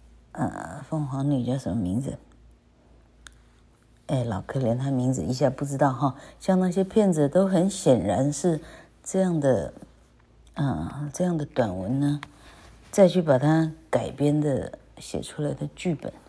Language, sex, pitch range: Chinese, female, 120-160 Hz